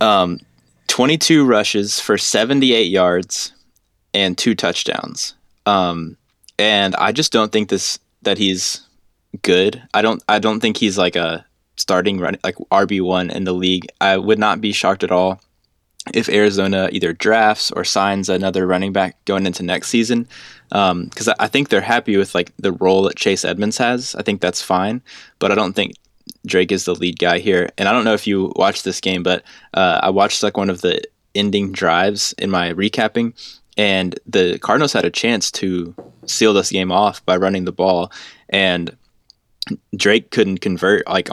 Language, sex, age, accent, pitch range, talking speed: English, male, 20-39, American, 90-105 Hz, 180 wpm